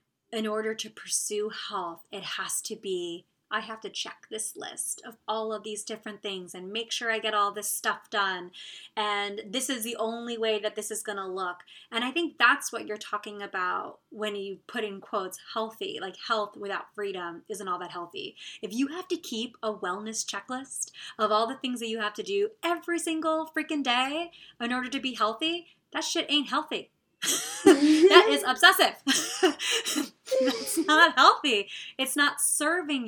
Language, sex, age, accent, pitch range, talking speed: English, female, 20-39, American, 210-295 Hz, 185 wpm